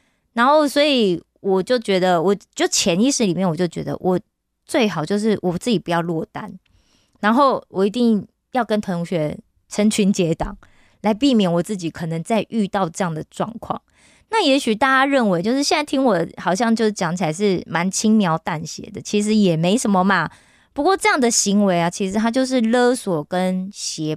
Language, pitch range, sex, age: Korean, 175-230 Hz, female, 20-39